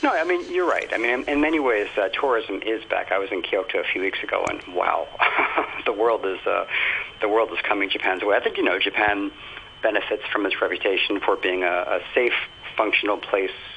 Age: 40-59